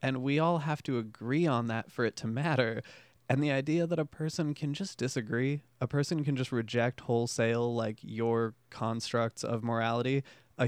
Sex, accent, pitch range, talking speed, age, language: male, American, 120-150 Hz, 185 wpm, 20-39, English